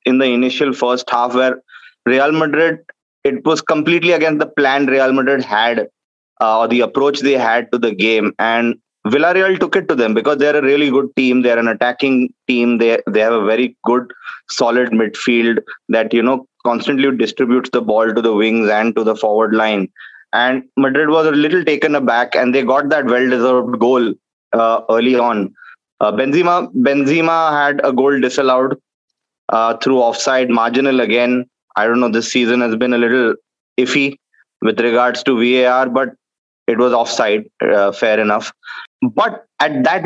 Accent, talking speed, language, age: Indian, 175 wpm, English, 20-39